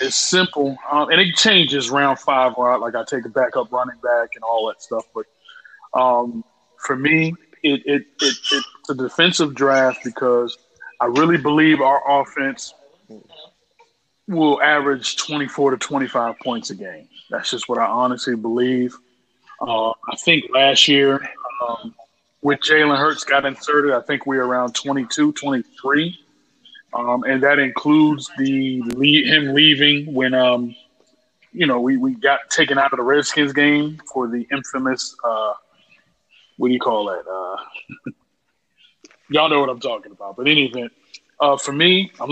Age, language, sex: 30-49, English, male